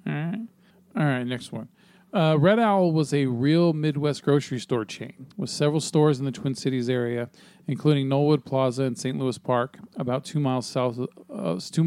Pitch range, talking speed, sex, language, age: 130-155 Hz, 160 wpm, male, English, 40-59